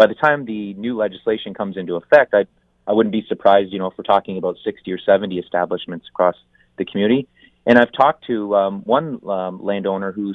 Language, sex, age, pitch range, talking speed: English, male, 30-49, 95-105 Hz, 210 wpm